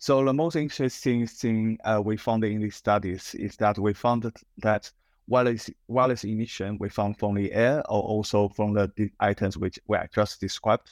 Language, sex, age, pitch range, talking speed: English, male, 20-39, 100-110 Hz, 180 wpm